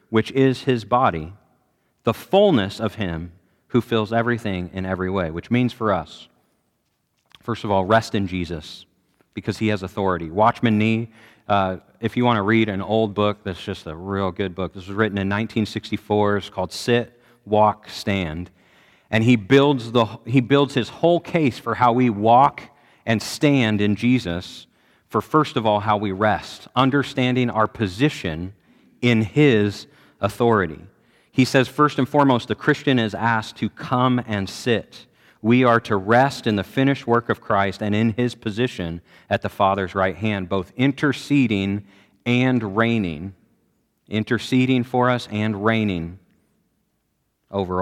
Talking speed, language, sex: 160 wpm, English, male